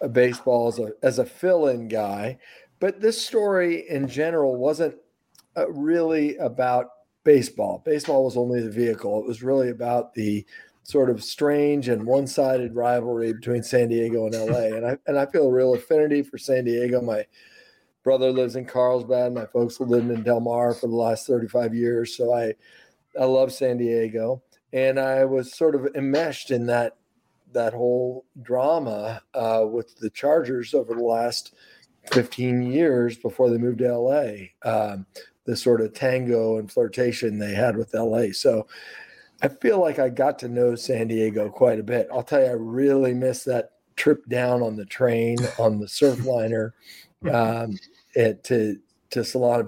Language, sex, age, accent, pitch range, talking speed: English, male, 40-59, American, 115-130 Hz, 170 wpm